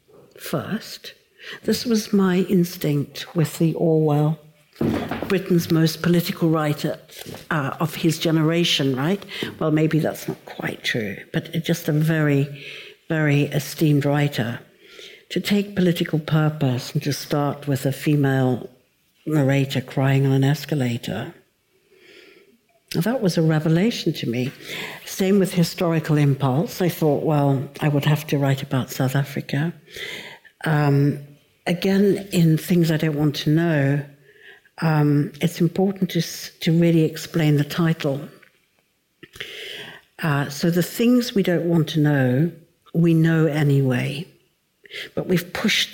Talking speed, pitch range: 130 wpm, 145-175 Hz